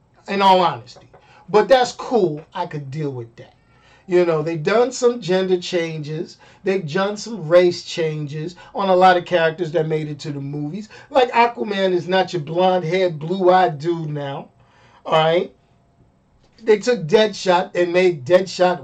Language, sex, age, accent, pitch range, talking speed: English, male, 50-69, American, 155-215 Hz, 160 wpm